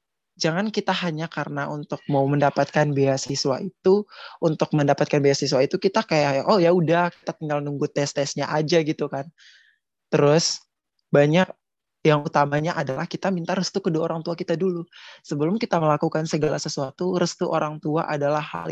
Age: 20-39